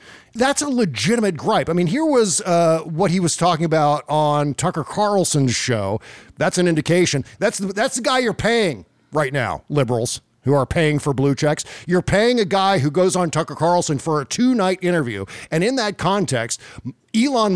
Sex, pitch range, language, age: male, 145-195 Hz, English, 50-69